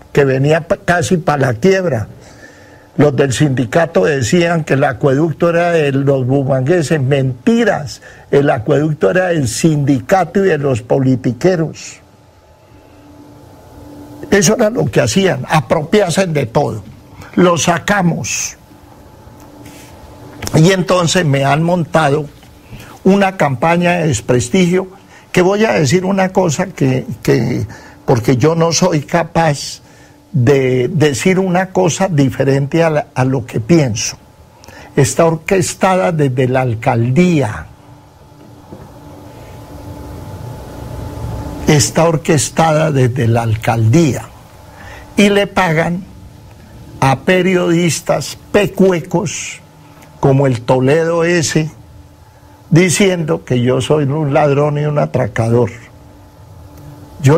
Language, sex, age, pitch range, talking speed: Spanish, male, 60-79, 125-170 Hz, 105 wpm